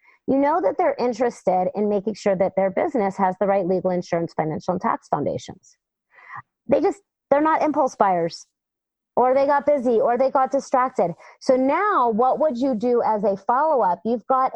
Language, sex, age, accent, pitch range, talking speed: English, female, 30-49, American, 190-260 Hz, 185 wpm